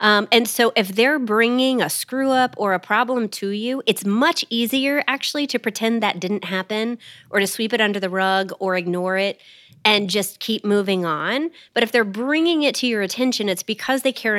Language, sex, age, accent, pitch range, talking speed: English, female, 30-49, American, 195-255 Hz, 205 wpm